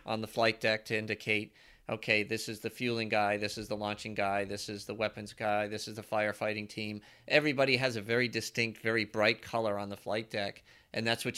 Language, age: English, 40-59